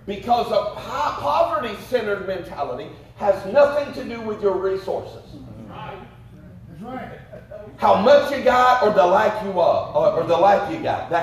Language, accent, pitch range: English, American, 175-285 Hz